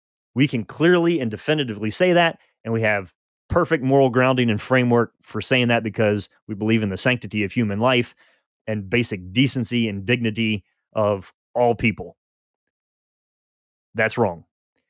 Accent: American